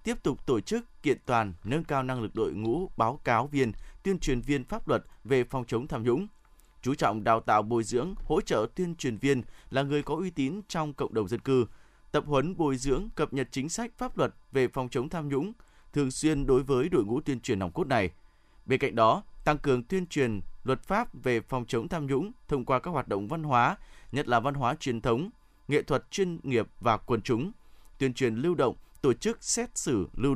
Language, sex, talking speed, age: Vietnamese, male, 225 wpm, 20-39